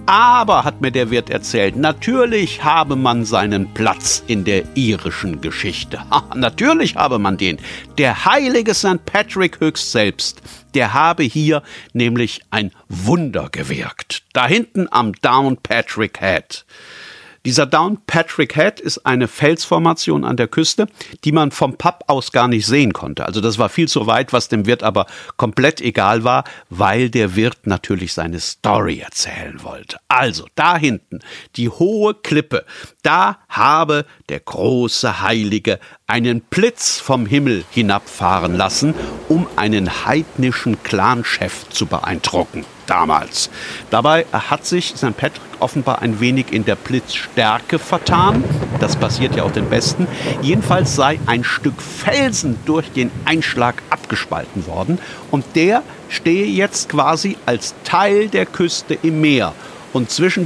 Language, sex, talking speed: German, male, 140 wpm